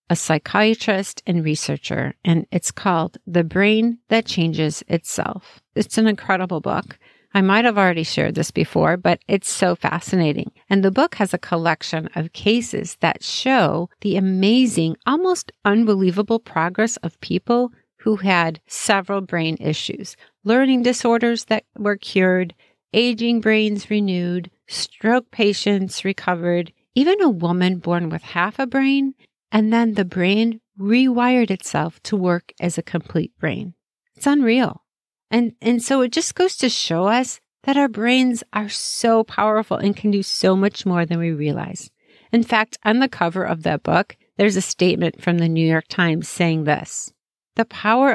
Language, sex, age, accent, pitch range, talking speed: English, female, 50-69, American, 175-230 Hz, 155 wpm